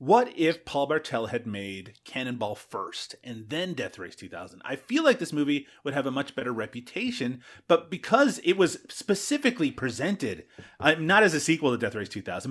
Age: 30-49